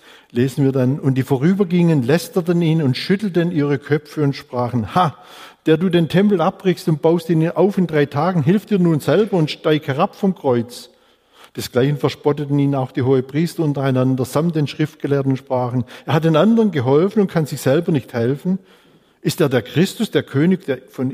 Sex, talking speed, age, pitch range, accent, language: male, 185 wpm, 50-69, 130-170 Hz, German, German